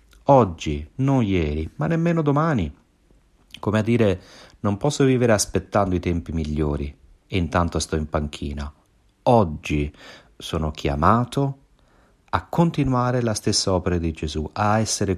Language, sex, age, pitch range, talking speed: Italian, male, 40-59, 80-115 Hz, 130 wpm